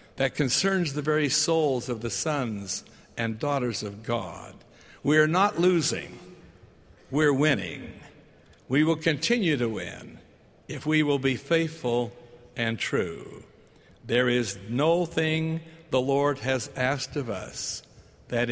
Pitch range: 120-150 Hz